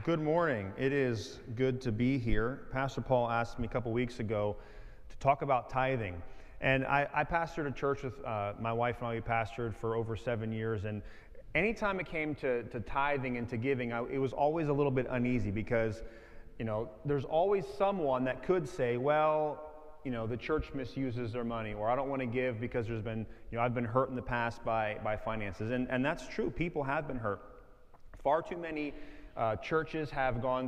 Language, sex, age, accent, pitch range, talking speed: English, male, 30-49, American, 115-140 Hz, 210 wpm